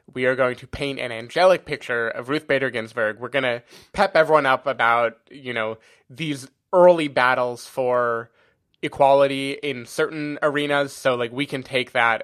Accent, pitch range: American, 120-150 Hz